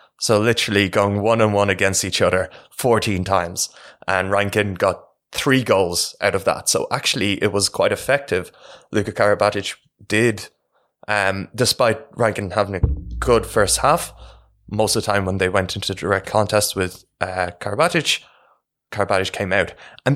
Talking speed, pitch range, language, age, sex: 150 wpm, 95-115 Hz, English, 20-39, male